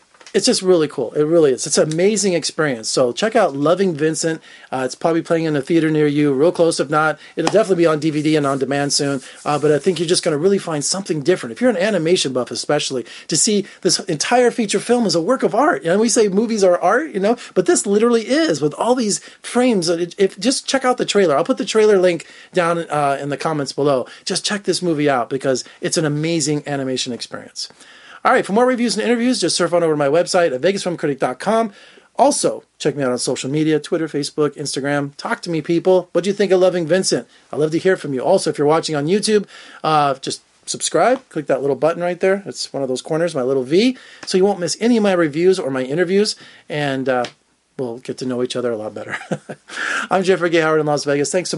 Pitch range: 145-195 Hz